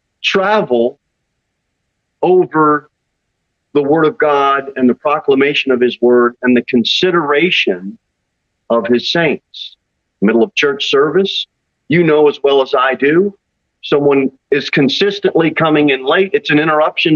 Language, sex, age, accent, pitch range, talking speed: English, male, 40-59, American, 135-200 Hz, 135 wpm